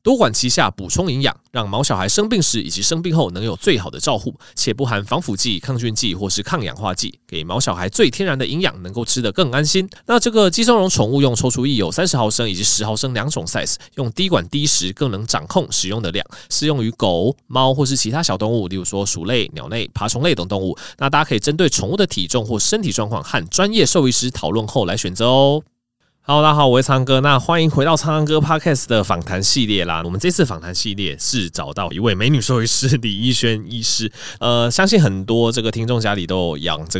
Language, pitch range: Chinese, 95-135 Hz